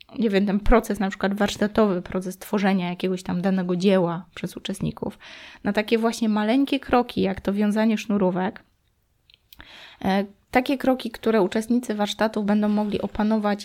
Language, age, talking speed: Polish, 20-39, 140 wpm